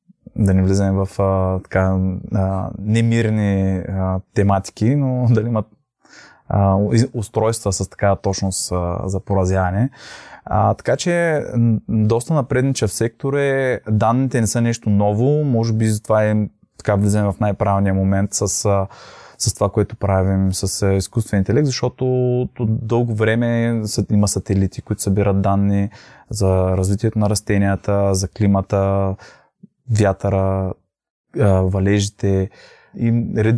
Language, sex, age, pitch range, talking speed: Bulgarian, male, 20-39, 100-115 Hz, 115 wpm